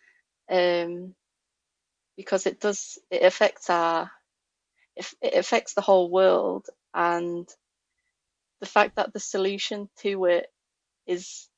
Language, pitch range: English, 165-195 Hz